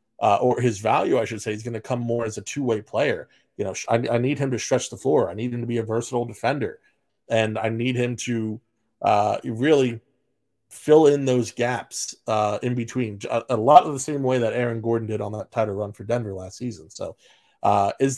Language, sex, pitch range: English, male, 115-135 Hz